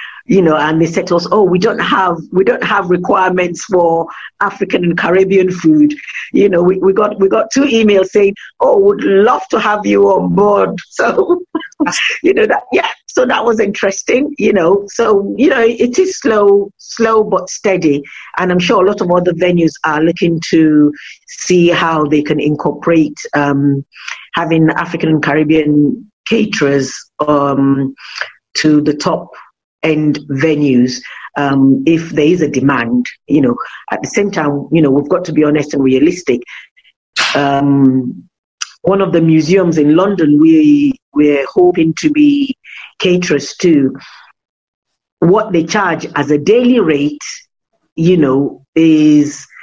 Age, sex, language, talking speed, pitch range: 50-69, female, English, 160 wpm, 150-205 Hz